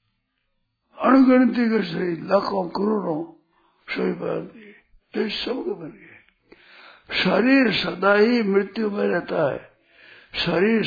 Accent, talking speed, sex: native, 90 wpm, male